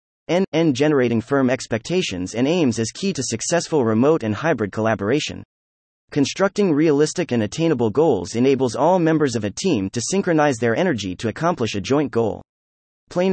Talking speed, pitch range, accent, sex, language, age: 160 wpm, 110-160 Hz, American, male, English, 30-49